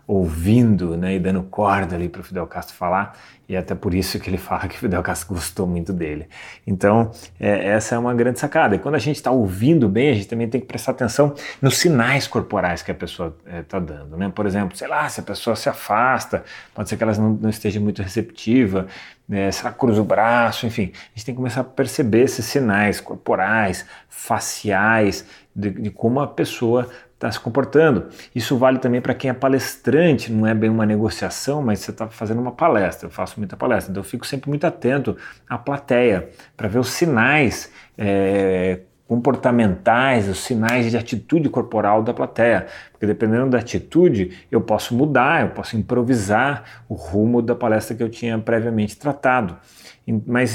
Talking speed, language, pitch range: 190 wpm, Portuguese, 100-130 Hz